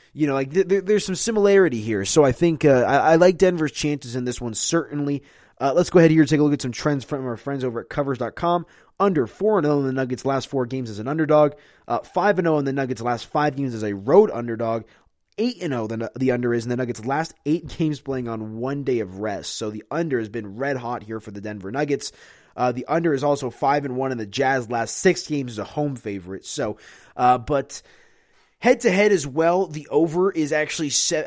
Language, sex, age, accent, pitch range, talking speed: English, male, 20-39, American, 120-150 Hz, 240 wpm